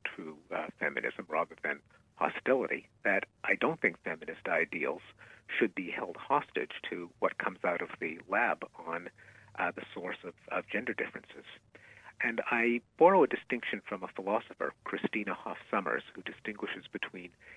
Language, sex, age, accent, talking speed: English, male, 50-69, American, 150 wpm